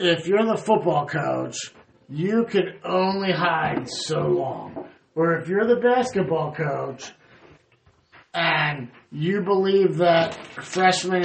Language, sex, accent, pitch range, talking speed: English, male, American, 160-190 Hz, 115 wpm